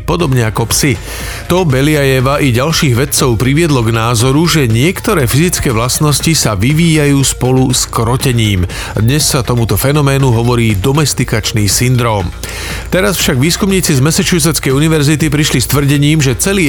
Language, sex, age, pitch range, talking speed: Slovak, male, 40-59, 120-145 Hz, 135 wpm